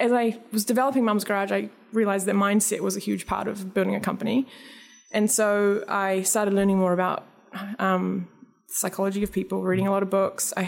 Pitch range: 190-220 Hz